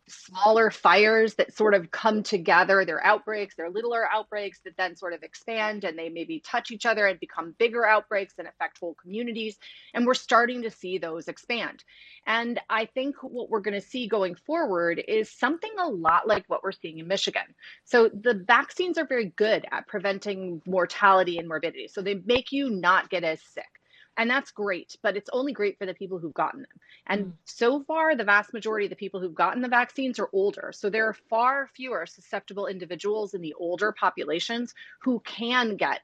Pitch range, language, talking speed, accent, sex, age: 185-240 Hz, English, 200 wpm, American, female, 30-49